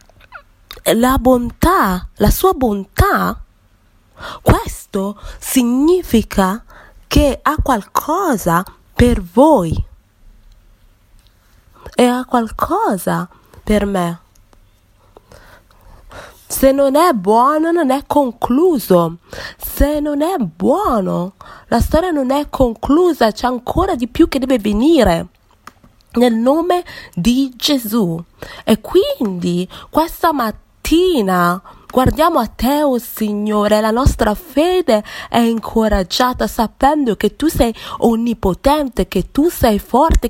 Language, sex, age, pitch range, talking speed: English, female, 20-39, 200-280 Hz, 105 wpm